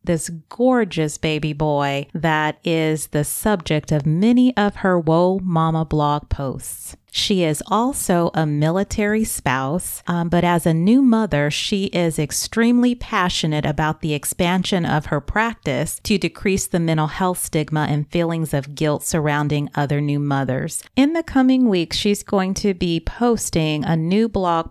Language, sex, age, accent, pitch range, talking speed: English, female, 30-49, American, 150-195 Hz, 155 wpm